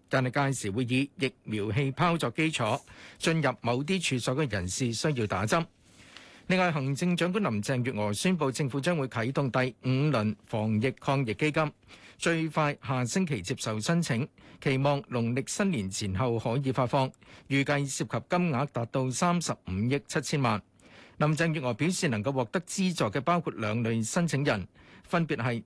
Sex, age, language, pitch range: male, 50-69, Chinese, 115-155 Hz